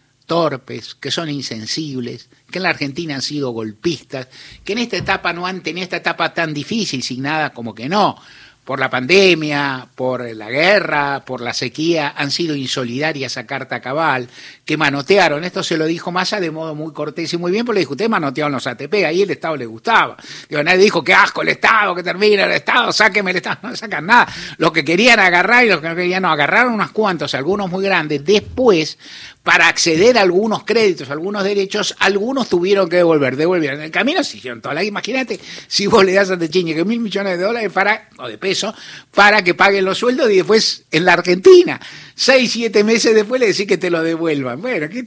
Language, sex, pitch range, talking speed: Spanish, male, 145-205 Hz, 215 wpm